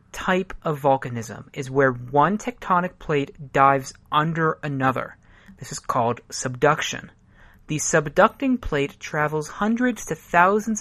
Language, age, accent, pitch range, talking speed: English, 30-49, American, 135-190 Hz, 120 wpm